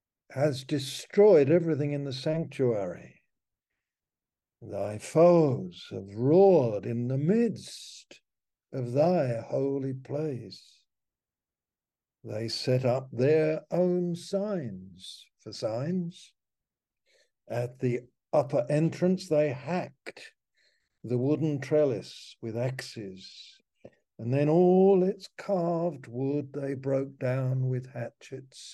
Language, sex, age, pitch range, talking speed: English, male, 60-79, 120-155 Hz, 100 wpm